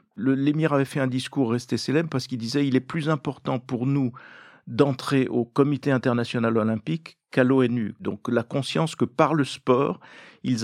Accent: French